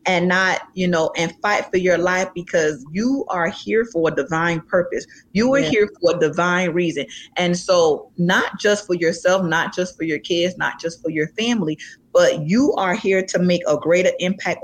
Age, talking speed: 30-49, 200 wpm